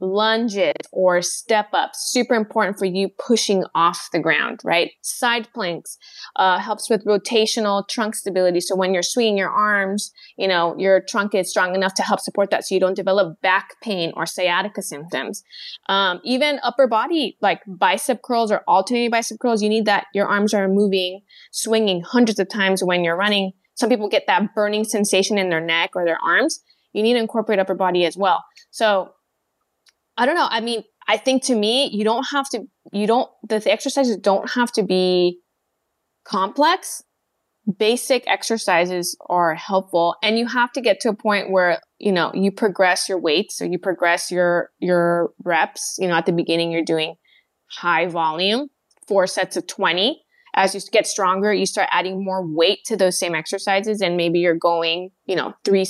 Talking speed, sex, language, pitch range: 185 wpm, female, English, 180-225 Hz